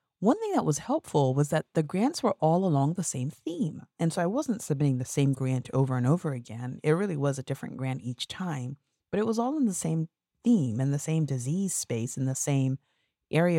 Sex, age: female, 30-49